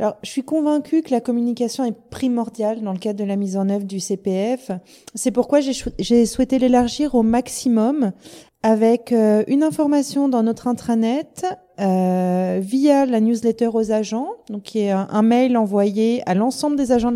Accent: French